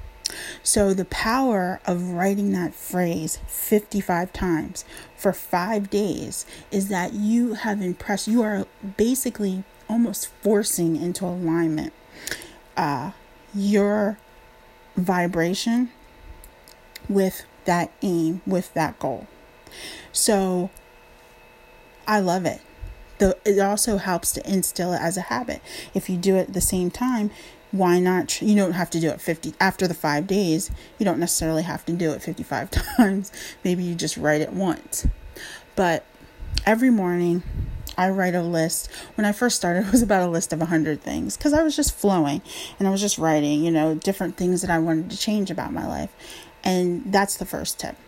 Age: 30-49